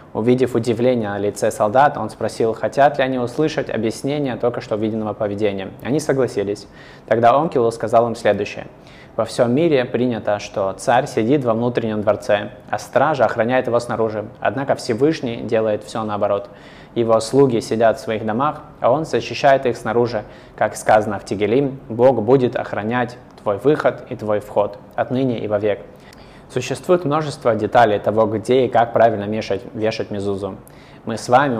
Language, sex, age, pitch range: Russian, male, 20-39, 105-125 Hz